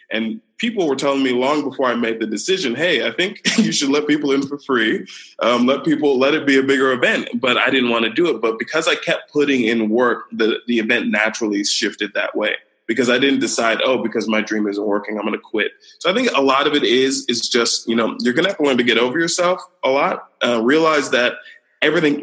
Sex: male